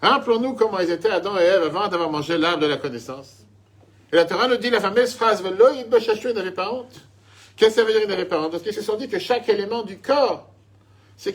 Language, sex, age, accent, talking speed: French, male, 50-69, French, 270 wpm